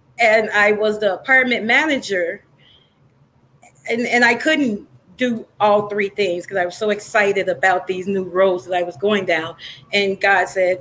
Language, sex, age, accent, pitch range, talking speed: English, female, 30-49, American, 195-255 Hz, 170 wpm